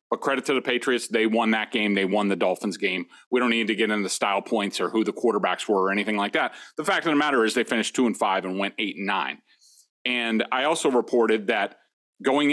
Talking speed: 255 wpm